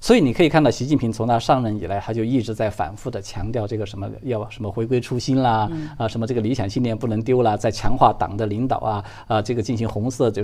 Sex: male